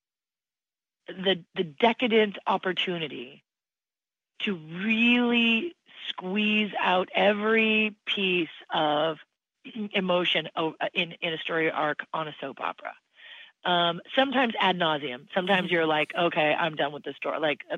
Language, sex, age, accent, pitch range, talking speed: English, female, 30-49, American, 160-210 Hz, 120 wpm